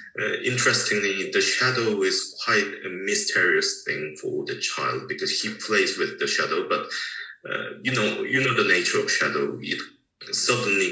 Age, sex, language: 20-39, male, English